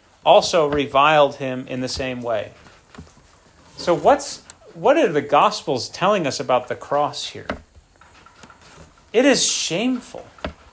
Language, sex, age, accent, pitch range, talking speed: English, male, 30-49, American, 135-190 Hz, 125 wpm